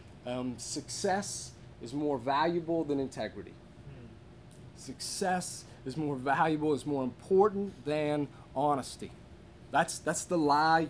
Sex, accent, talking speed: male, American, 110 wpm